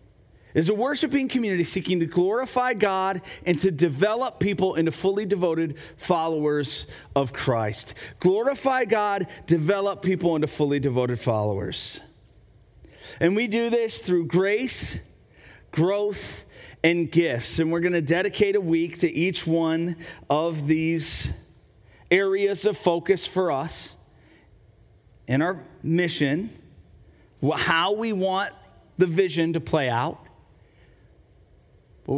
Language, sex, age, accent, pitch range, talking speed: English, male, 40-59, American, 120-180 Hz, 120 wpm